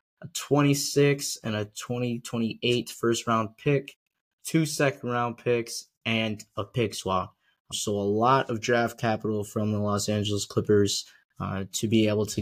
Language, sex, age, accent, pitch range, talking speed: English, male, 10-29, American, 110-130 Hz, 160 wpm